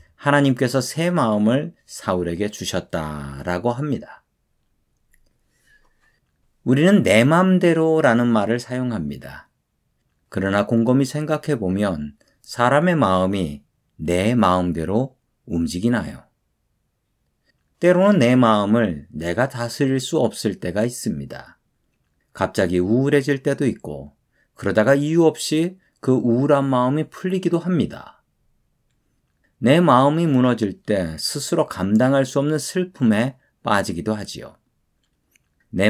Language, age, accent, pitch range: Korean, 40-59, native, 95-145 Hz